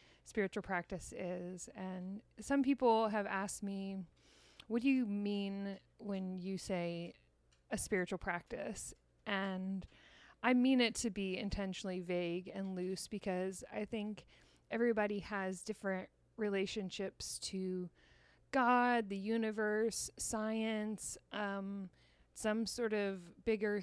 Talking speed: 115 wpm